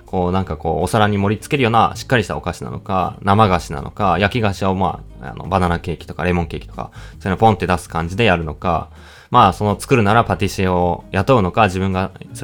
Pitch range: 90-120 Hz